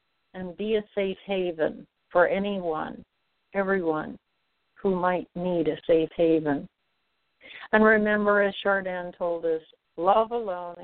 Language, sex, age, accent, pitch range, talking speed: English, female, 60-79, American, 170-205 Hz, 120 wpm